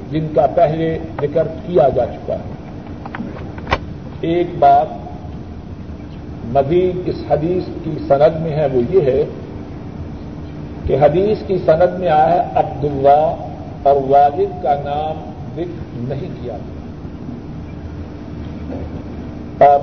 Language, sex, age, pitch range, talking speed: Urdu, male, 50-69, 145-175 Hz, 110 wpm